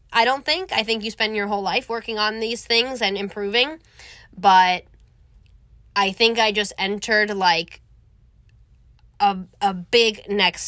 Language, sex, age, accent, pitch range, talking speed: English, female, 20-39, American, 185-225 Hz, 150 wpm